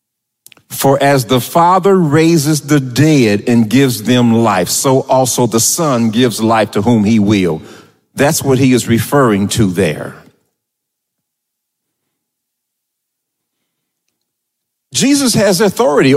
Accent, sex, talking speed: American, male, 115 wpm